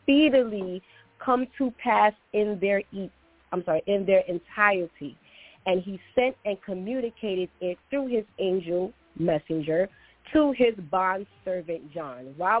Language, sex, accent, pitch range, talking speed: English, female, American, 175-225 Hz, 135 wpm